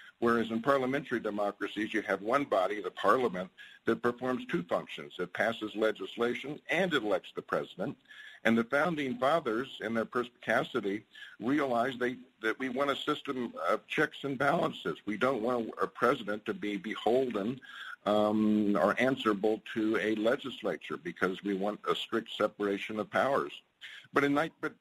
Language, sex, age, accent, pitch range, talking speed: English, male, 50-69, American, 100-125 Hz, 155 wpm